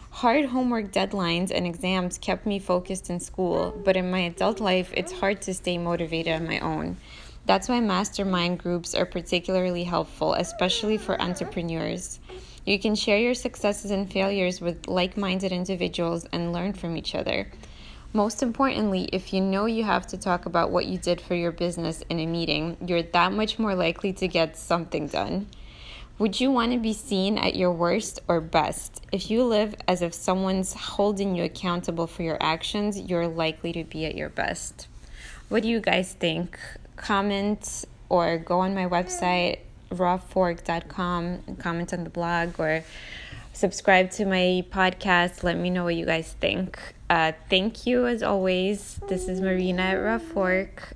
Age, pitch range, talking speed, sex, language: 20-39, 175-200 Hz, 170 wpm, female, English